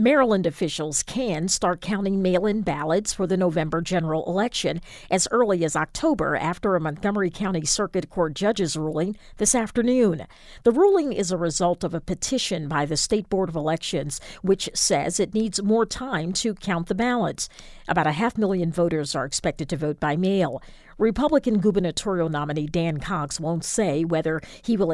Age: 50-69